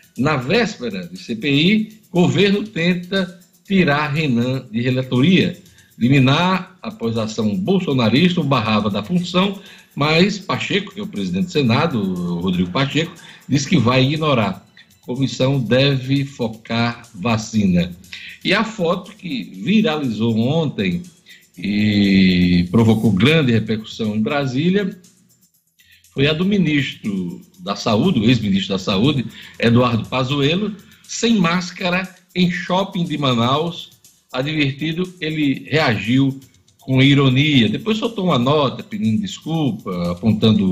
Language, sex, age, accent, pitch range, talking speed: Portuguese, male, 60-79, Brazilian, 130-190 Hz, 120 wpm